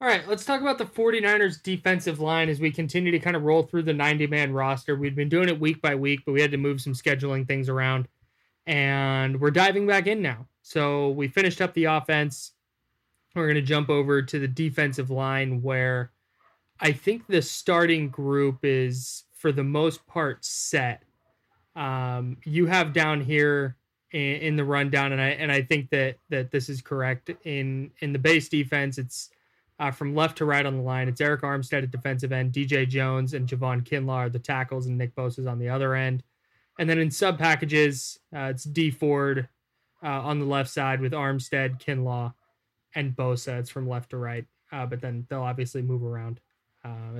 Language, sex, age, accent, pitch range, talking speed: English, male, 20-39, American, 130-155 Hz, 200 wpm